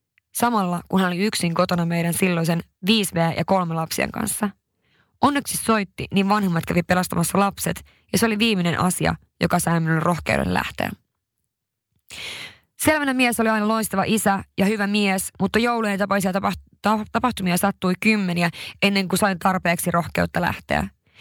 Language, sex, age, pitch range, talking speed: Finnish, female, 20-39, 175-210 Hz, 145 wpm